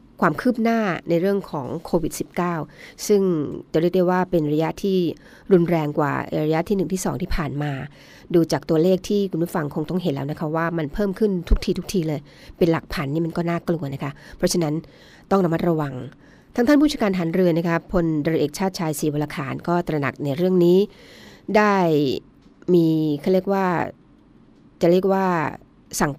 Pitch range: 155-185 Hz